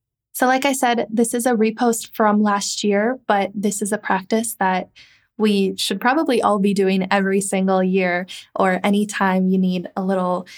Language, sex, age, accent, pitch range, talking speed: English, female, 20-39, American, 195-230 Hz, 180 wpm